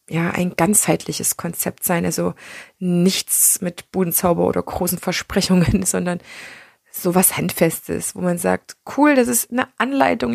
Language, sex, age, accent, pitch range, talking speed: German, female, 20-39, German, 175-210 Hz, 135 wpm